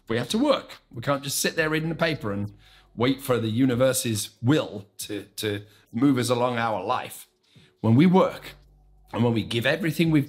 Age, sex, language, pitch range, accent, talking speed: 40-59, male, English, 105-140 Hz, British, 200 wpm